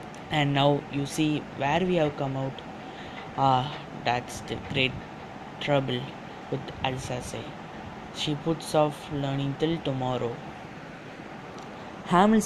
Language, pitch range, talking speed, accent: English, 135-160 Hz, 110 wpm, Indian